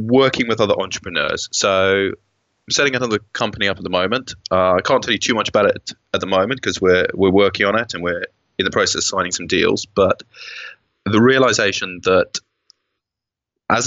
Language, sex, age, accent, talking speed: English, male, 20-39, British, 195 wpm